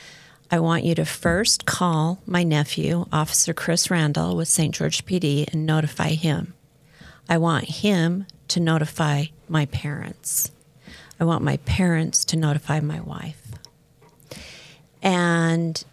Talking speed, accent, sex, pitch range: 130 wpm, American, female, 150-170 Hz